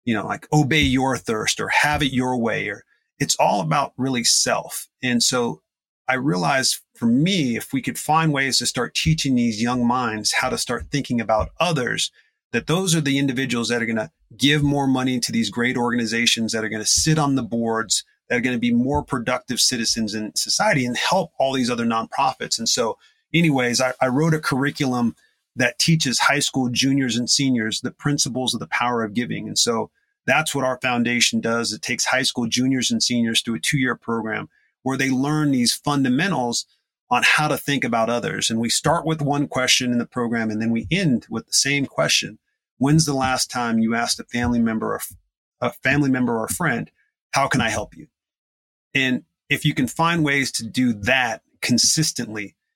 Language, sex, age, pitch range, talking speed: English, male, 40-59, 120-140 Hz, 205 wpm